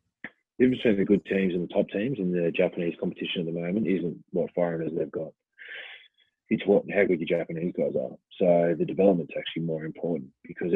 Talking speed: 205 wpm